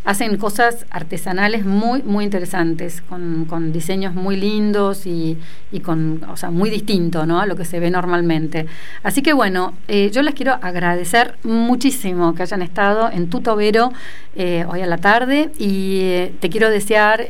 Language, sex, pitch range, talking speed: Italian, female, 180-225 Hz, 175 wpm